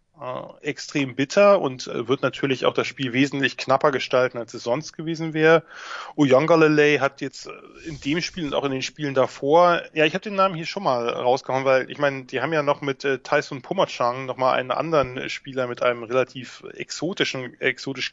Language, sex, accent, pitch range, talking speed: English, male, German, 115-150 Hz, 190 wpm